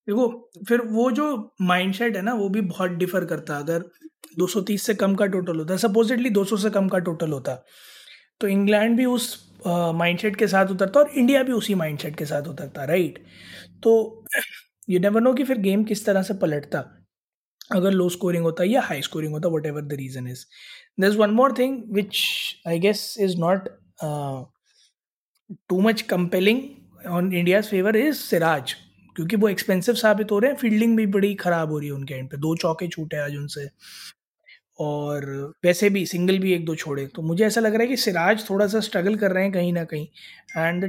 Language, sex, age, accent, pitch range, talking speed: Hindi, male, 20-39, native, 170-215 Hz, 195 wpm